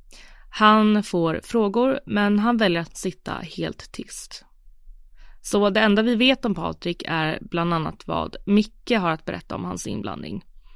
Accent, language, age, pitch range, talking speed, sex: native, Swedish, 20-39, 165-215 Hz, 155 wpm, female